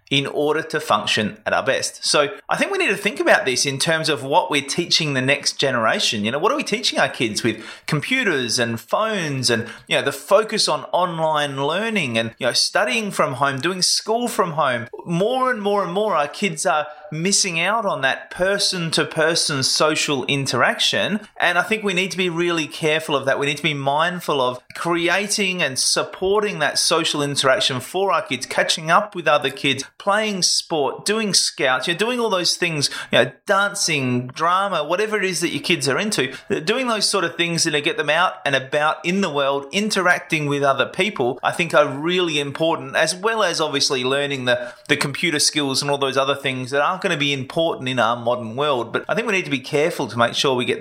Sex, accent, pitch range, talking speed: male, Australian, 140-195 Hz, 215 wpm